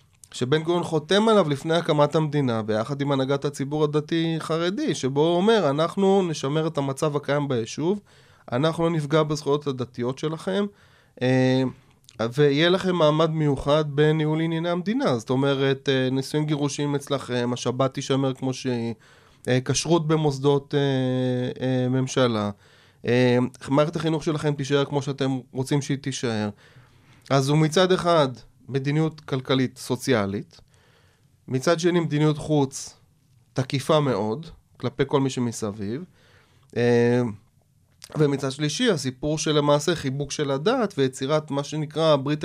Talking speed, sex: 120 wpm, male